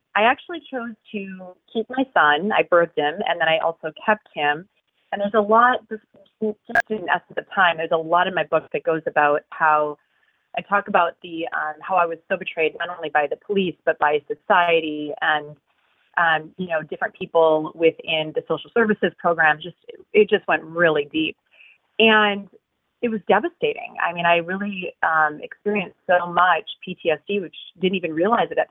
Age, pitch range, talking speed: 30-49, 160-205 Hz, 185 wpm